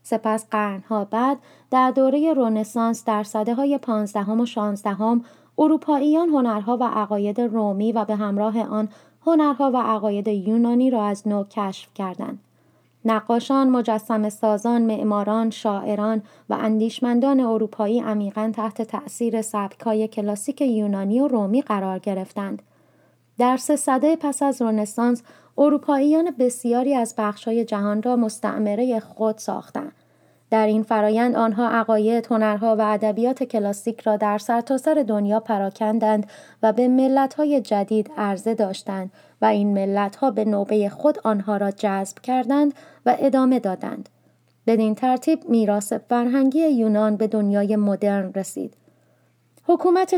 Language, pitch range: Persian, 210-250 Hz